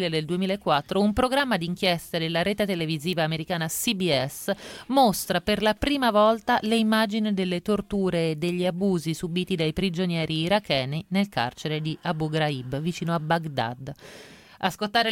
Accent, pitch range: native, 160-210 Hz